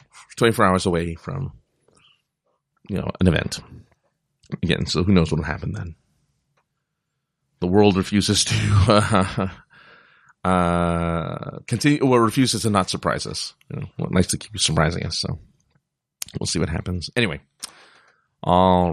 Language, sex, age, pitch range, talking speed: English, male, 30-49, 90-140 Hz, 140 wpm